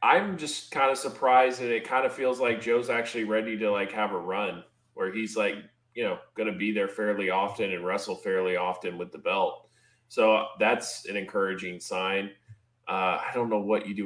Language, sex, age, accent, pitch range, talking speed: English, male, 20-39, American, 100-120 Hz, 210 wpm